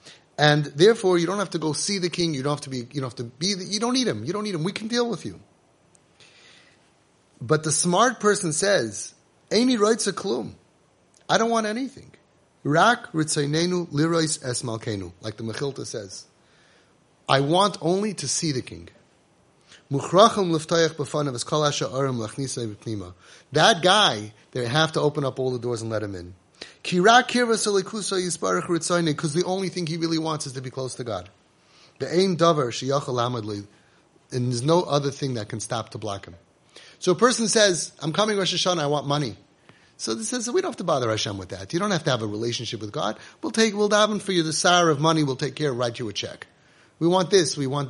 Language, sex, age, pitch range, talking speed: English, male, 30-49, 125-185 Hz, 190 wpm